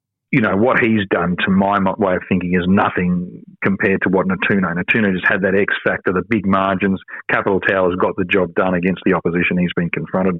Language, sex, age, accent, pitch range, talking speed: English, male, 40-59, Australian, 95-105 Hz, 215 wpm